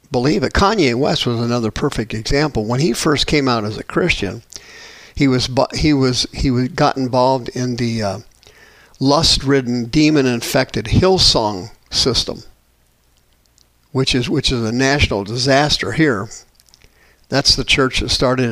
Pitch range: 110-145 Hz